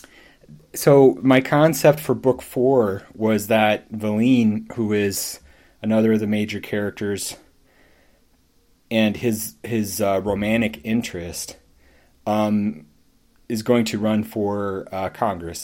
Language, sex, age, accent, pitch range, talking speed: English, male, 30-49, American, 95-110 Hz, 115 wpm